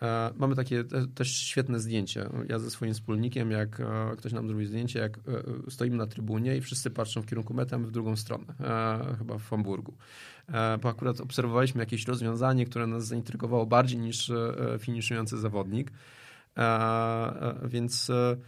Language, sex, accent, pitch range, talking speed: Polish, male, native, 110-125 Hz, 140 wpm